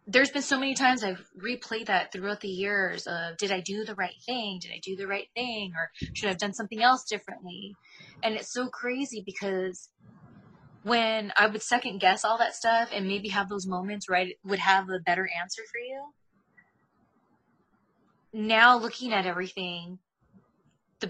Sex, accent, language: female, American, English